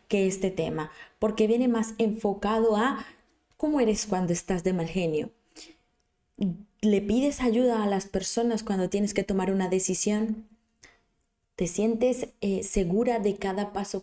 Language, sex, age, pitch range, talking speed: Spanish, female, 20-39, 185-225 Hz, 145 wpm